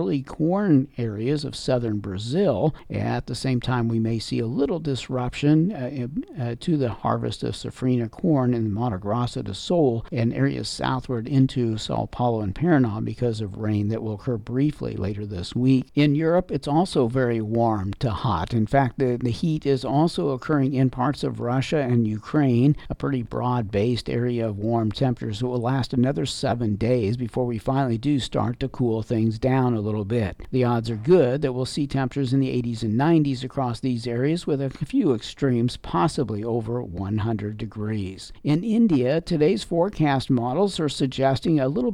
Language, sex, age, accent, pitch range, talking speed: English, male, 50-69, American, 115-140 Hz, 185 wpm